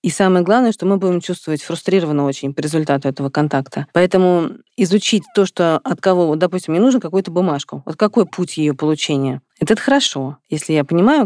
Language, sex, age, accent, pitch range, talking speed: Russian, female, 40-59, native, 155-195 Hz, 185 wpm